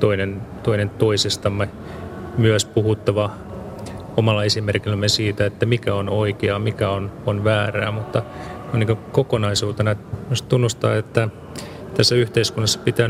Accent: native